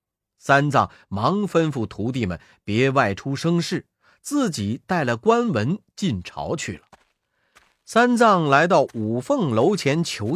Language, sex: Chinese, male